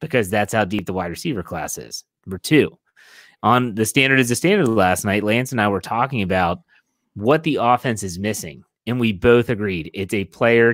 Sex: male